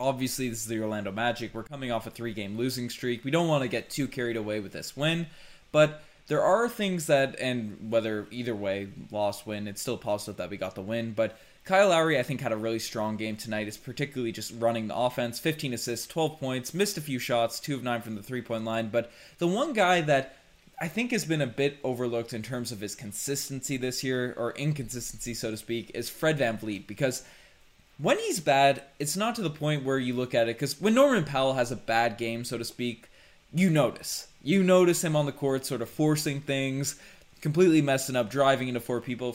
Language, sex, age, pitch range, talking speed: English, male, 20-39, 115-150 Hz, 225 wpm